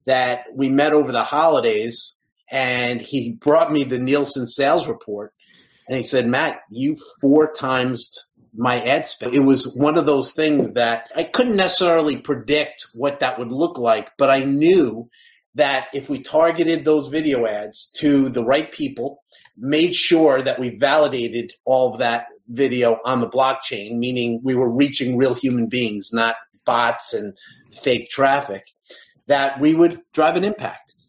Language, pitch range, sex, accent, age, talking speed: English, 130-155 Hz, male, American, 40-59, 160 wpm